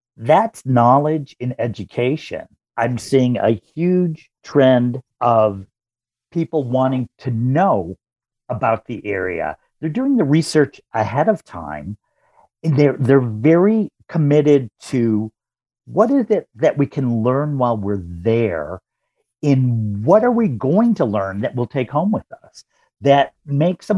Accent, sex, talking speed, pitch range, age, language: American, male, 145 wpm, 115-160 Hz, 50-69, English